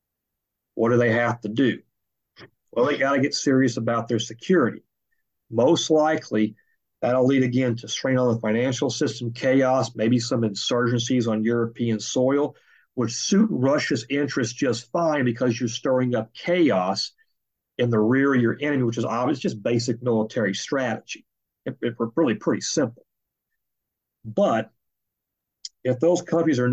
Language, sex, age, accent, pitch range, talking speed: English, male, 50-69, American, 110-125 Hz, 150 wpm